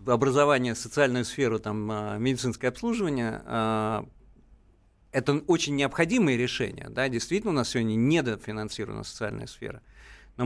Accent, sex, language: native, male, Russian